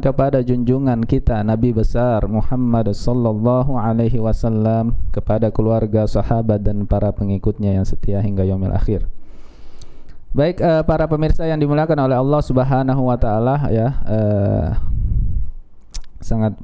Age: 20-39